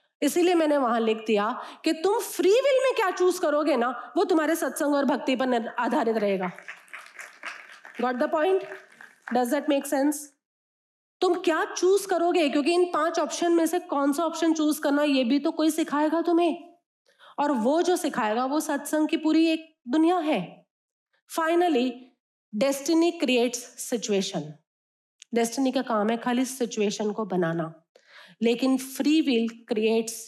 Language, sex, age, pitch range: Hindi, female, 30-49, 225-320 Hz